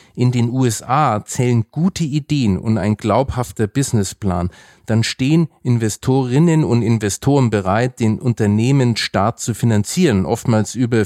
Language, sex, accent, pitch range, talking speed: German, male, German, 105-130 Hz, 125 wpm